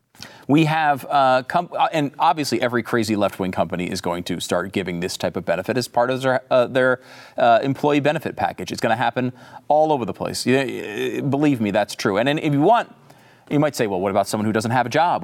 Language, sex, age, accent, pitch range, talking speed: English, male, 40-59, American, 110-140 Hz, 230 wpm